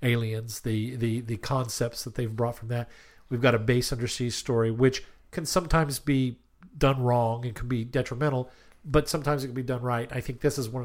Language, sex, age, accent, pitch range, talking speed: English, male, 50-69, American, 115-145 Hz, 210 wpm